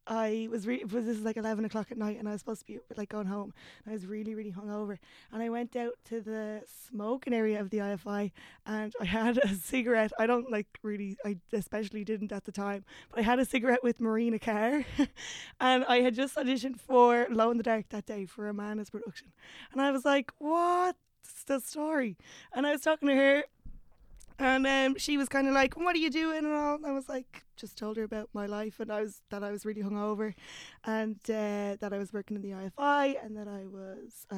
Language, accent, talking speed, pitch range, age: English, Irish, 235 wpm, 210-260 Hz, 20-39